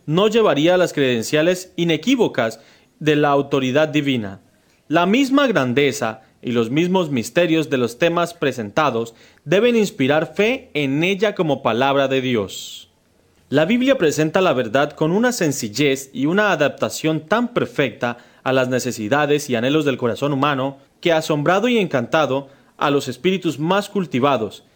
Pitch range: 130-175 Hz